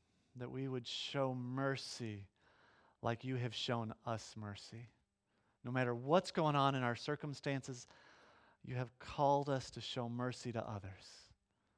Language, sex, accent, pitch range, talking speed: English, male, American, 120-170 Hz, 145 wpm